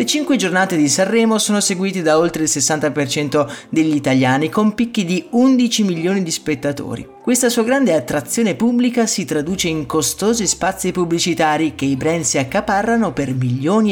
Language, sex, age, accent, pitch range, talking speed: Italian, male, 30-49, native, 150-210 Hz, 165 wpm